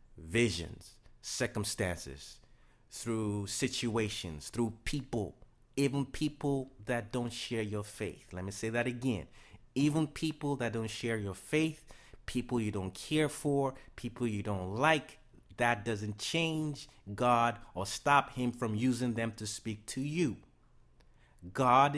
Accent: American